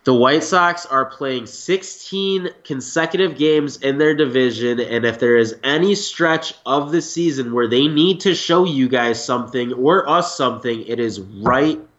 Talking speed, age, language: 170 wpm, 20-39, English